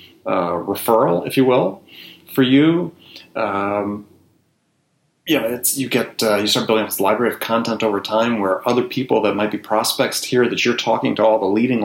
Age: 30-49